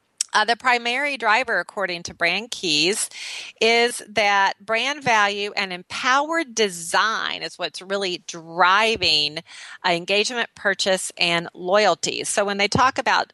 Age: 40-59